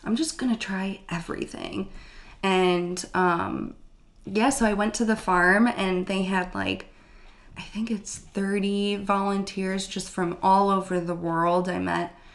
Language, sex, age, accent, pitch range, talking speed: English, female, 20-39, American, 180-215 Hz, 150 wpm